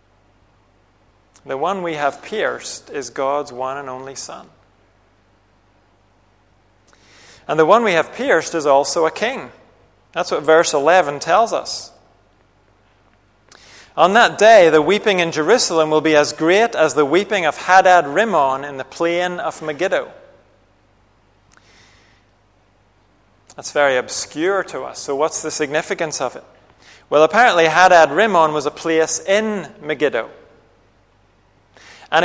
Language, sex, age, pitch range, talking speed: English, male, 30-49, 105-165 Hz, 125 wpm